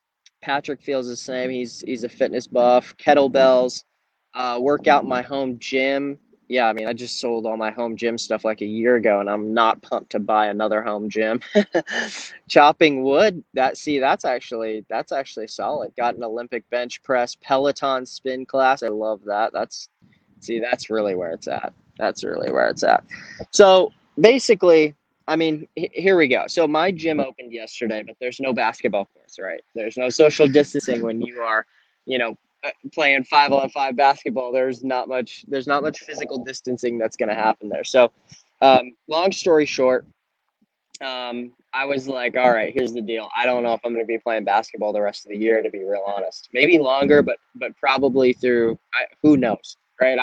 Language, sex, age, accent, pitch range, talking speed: English, male, 20-39, American, 115-140 Hz, 190 wpm